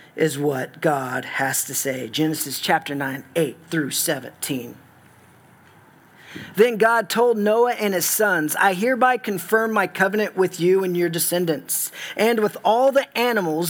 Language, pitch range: English, 165-225 Hz